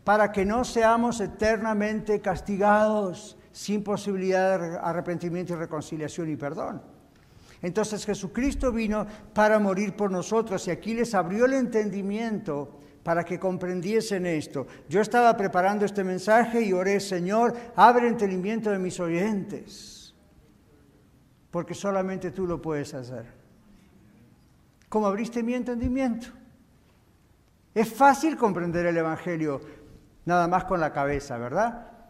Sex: male